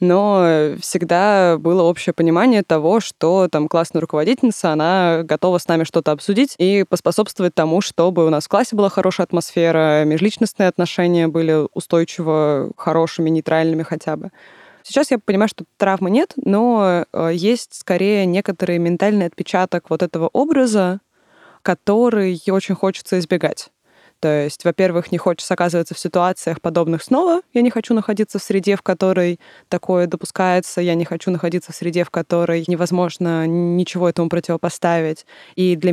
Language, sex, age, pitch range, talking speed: Russian, female, 20-39, 165-190 Hz, 145 wpm